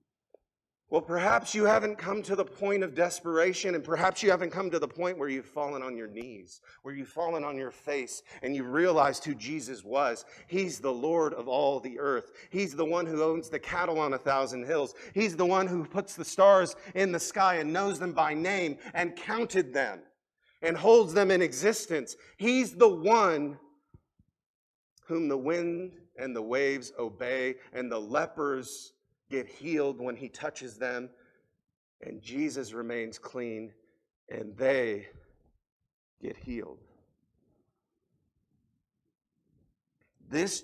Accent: American